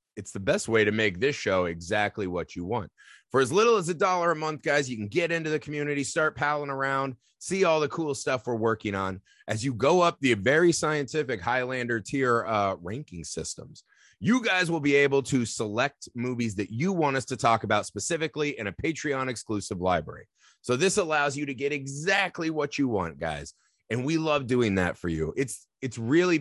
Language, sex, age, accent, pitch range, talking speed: English, male, 30-49, American, 110-145 Hz, 210 wpm